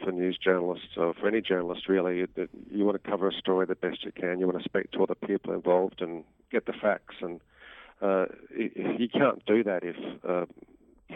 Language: English